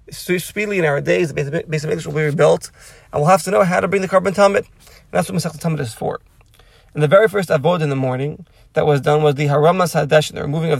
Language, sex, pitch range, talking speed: English, male, 145-165 Hz, 265 wpm